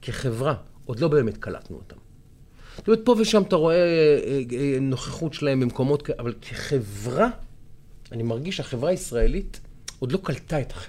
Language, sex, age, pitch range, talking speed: Hebrew, male, 40-59, 115-160 Hz, 140 wpm